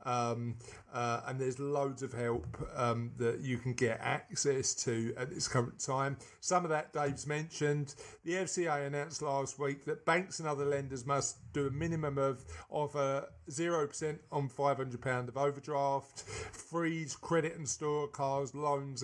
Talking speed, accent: 160 wpm, British